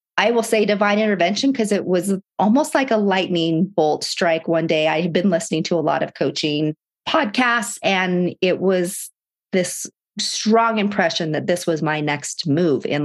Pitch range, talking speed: 165-210 Hz, 180 wpm